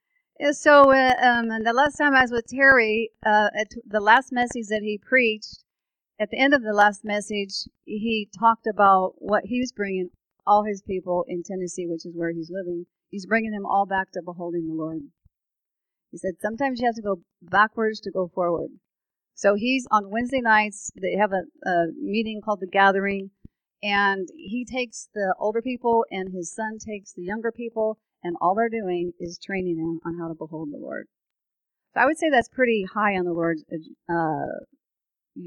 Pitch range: 180-230 Hz